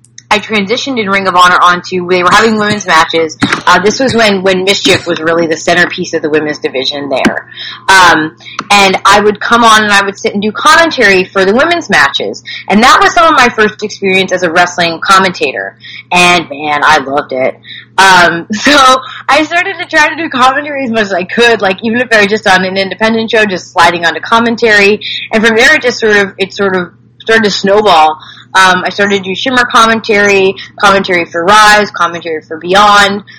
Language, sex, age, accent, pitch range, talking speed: English, female, 20-39, American, 175-220 Hz, 210 wpm